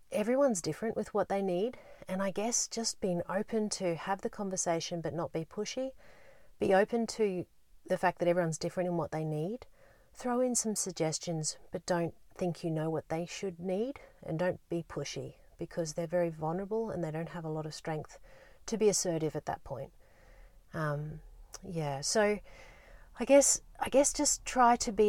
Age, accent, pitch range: 40-59, Australian, 160-200 Hz